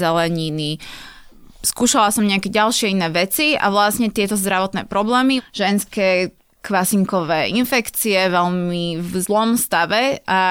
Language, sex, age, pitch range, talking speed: Slovak, female, 20-39, 195-225 Hz, 115 wpm